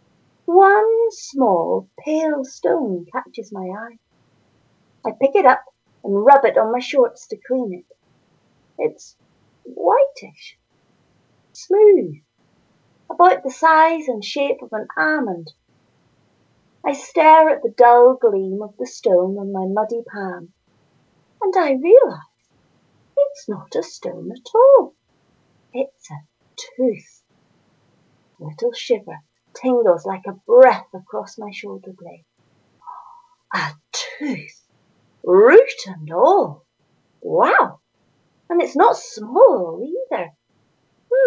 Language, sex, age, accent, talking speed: English, female, 40-59, British, 115 wpm